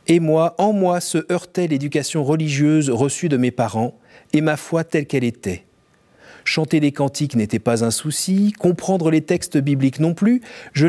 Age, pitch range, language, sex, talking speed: 40-59, 125-175 Hz, French, male, 175 wpm